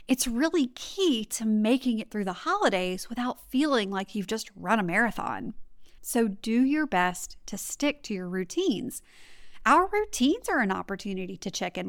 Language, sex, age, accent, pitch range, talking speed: English, female, 30-49, American, 195-275 Hz, 170 wpm